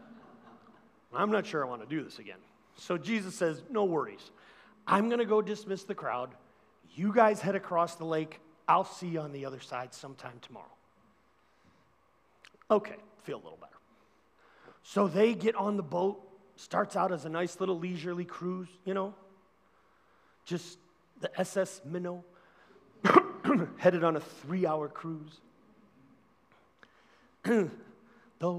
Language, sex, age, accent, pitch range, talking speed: English, male, 40-59, American, 180-270 Hz, 140 wpm